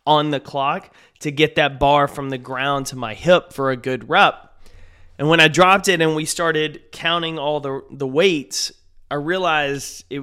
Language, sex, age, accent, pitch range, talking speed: English, male, 30-49, American, 130-170 Hz, 195 wpm